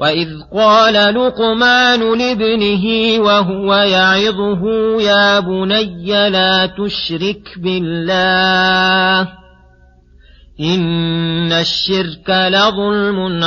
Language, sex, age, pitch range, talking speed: Arabic, male, 40-59, 185-220 Hz, 60 wpm